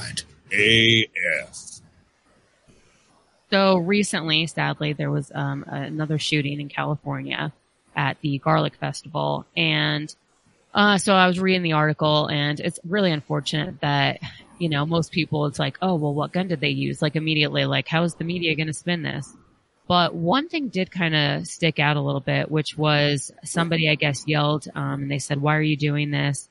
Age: 20-39